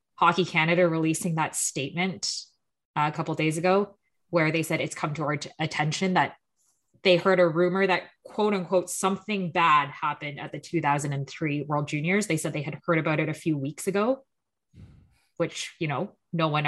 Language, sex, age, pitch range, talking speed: English, female, 20-39, 155-185 Hz, 185 wpm